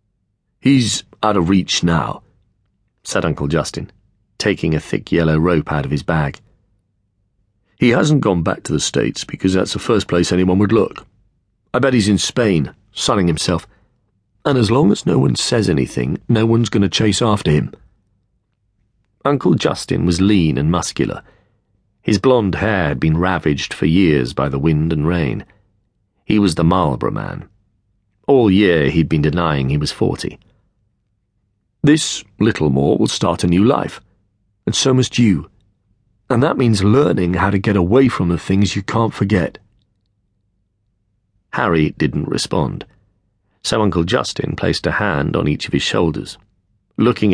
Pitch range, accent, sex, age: 90-105 Hz, British, male, 40-59